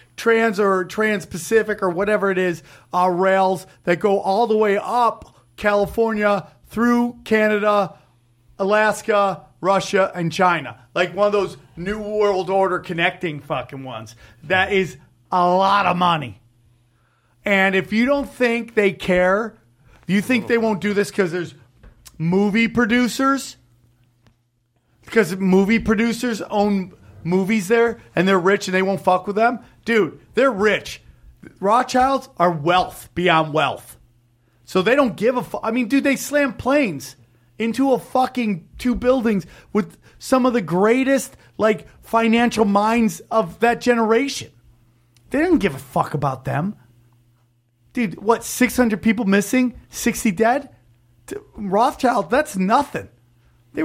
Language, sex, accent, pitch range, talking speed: English, male, American, 155-230 Hz, 140 wpm